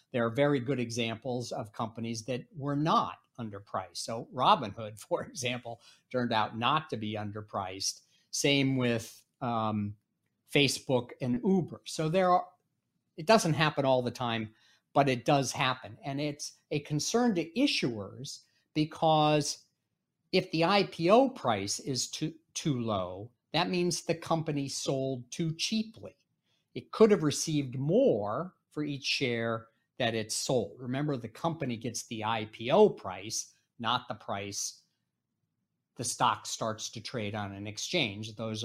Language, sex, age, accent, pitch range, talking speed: English, male, 50-69, American, 115-165 Hz, 145 wpm